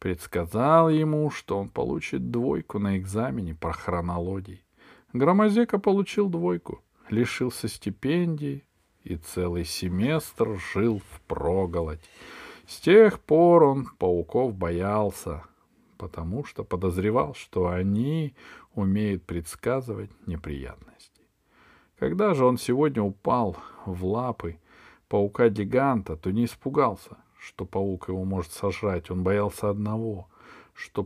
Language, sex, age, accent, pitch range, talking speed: Russian, male, 40-59, native, 90-110 Hz, 105 wpm